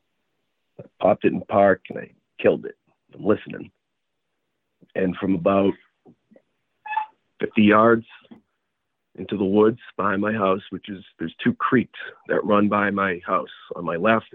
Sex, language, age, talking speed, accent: male, English, 40-59, 145 wpm, American